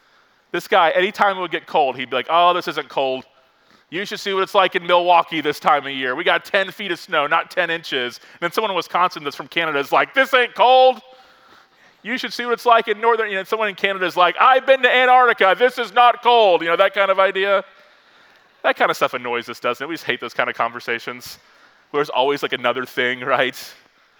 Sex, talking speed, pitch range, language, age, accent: male, 245 wpm, 135-205 Hz, English, 30-49, American